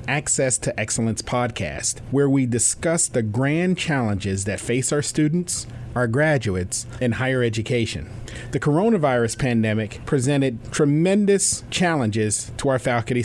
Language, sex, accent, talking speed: English, male, American, 125 wpm